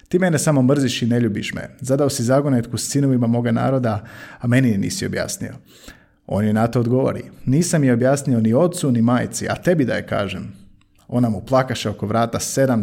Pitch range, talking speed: 110-135 Hz, 195 wpm